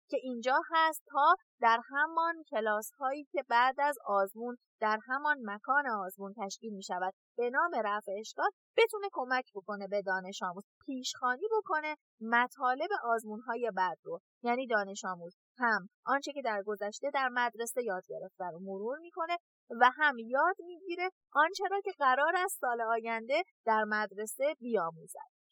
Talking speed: 155 wpm